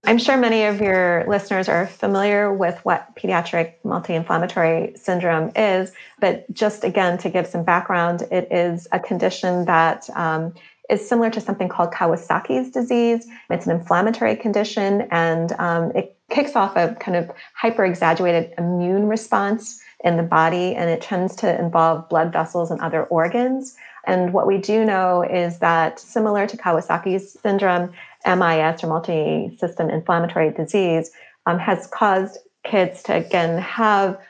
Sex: female